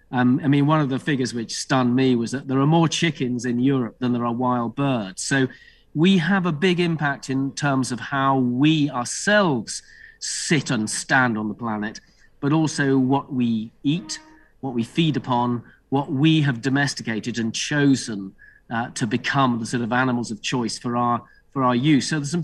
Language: English